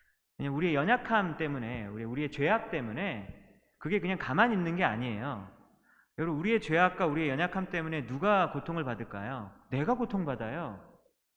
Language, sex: Korean, male